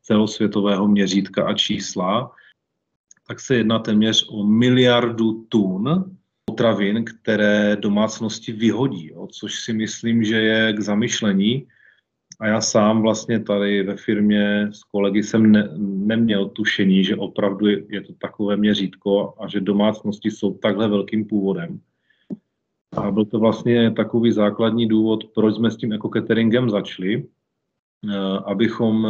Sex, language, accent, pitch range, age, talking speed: male, Czech, native, 105-115 Hz, 30-49, 135 wpm